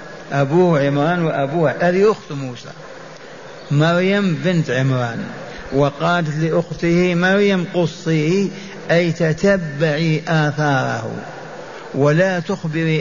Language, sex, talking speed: Arabic, male, 85 wpm